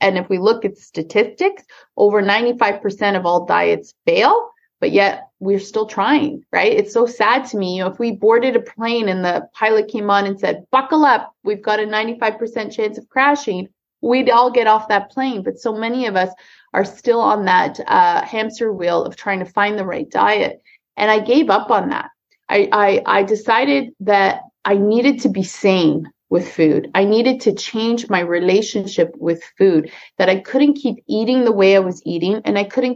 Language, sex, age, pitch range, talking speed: English, female, 30-49, 190-245 Hz, 200 wpm